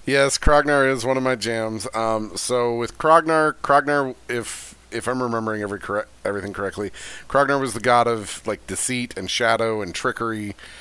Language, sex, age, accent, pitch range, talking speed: English, male, 40-59, American, 100-125 Hz, 170 wpm